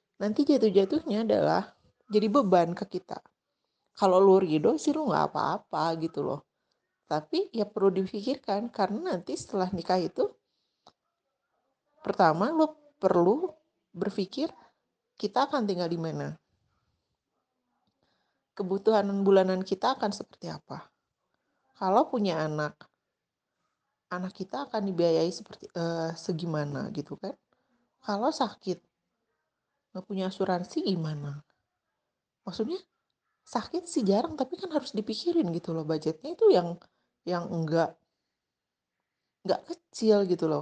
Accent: native